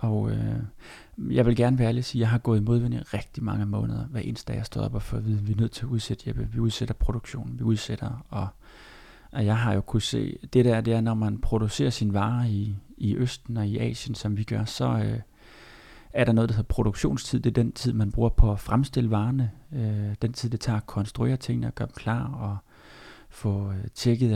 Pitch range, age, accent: 110-125 Hz, 30-49, native